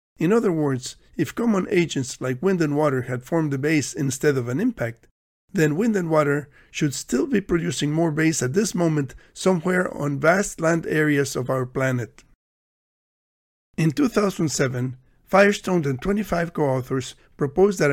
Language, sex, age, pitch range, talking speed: English, male, 50-69, 135-175 Hz, 155 wpm